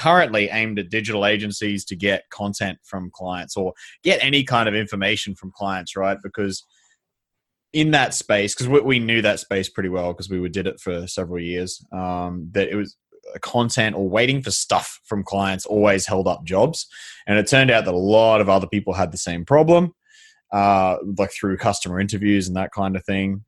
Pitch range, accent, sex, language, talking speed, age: 95-120 Hz, Australian, male, English, 195 wpm, 20-39